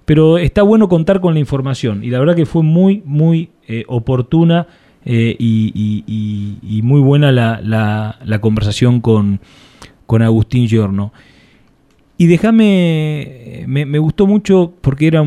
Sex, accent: male, Argentinian